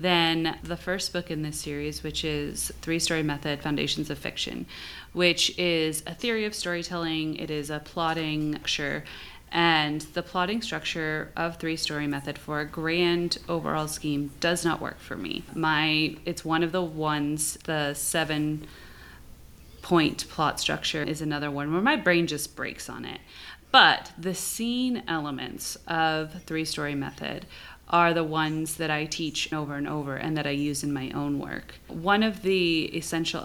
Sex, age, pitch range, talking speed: female, 30-49, 150-170 Hz, 170 wpm